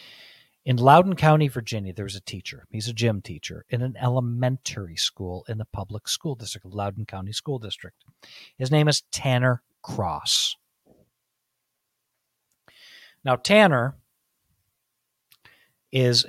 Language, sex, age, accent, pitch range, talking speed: English, male, 50-69, American, 105-125 Hz, 120 wpm